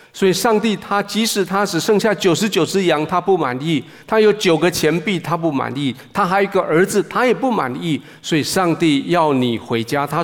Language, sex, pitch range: Chinese, male, 160-220 Hz